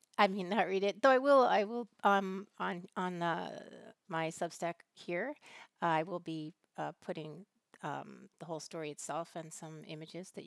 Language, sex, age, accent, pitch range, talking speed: English, female, 40-59, American, 165-210 Hz, 185 wpm